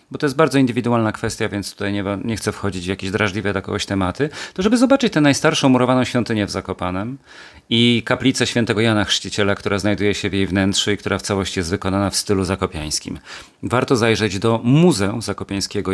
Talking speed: 190 wpm